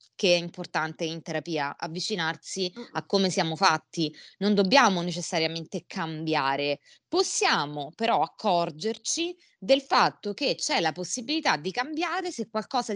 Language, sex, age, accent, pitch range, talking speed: Italian, female, 20-39, native, 160-215 Hz, 125 wpm